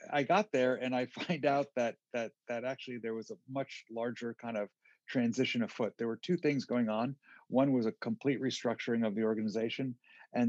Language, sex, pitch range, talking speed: English, male, 115-135 Hz, 200 wpm